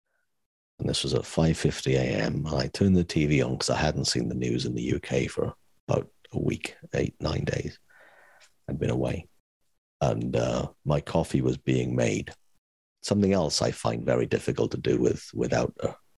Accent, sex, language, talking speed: British, male, English, 175 wpm